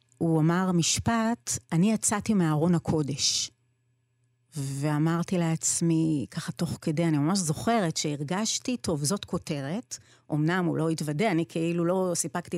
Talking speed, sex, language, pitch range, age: 130 wpm, female, Hebrew, 150-200 Hz, 30-49